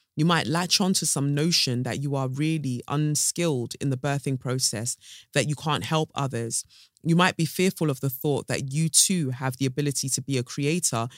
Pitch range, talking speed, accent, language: 130-155 Hz, 205 wpm, British, English